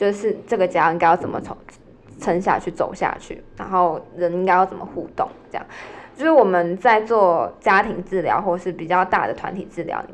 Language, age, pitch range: Chinese, 20-39, 175-220 Hz